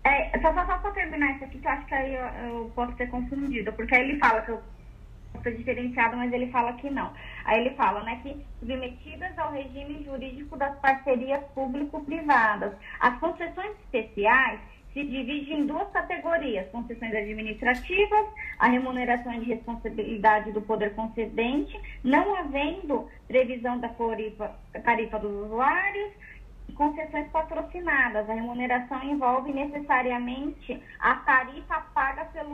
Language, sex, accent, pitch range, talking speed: Portuguese, female, Brazilian, 245-315 Hz, 140 wpm